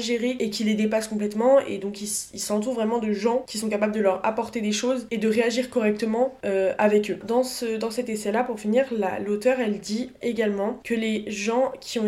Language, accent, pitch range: French, French, 210-250 Hz